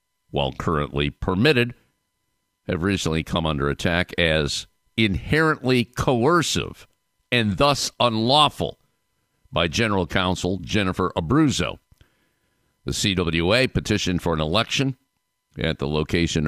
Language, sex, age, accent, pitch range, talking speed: English, male, 50-69, American, 75-105 Hz, 100 wpm